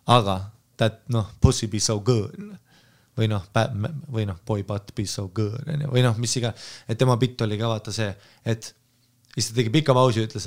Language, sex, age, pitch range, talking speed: English, male, 30-49, 110-130 Hz, 185 wpm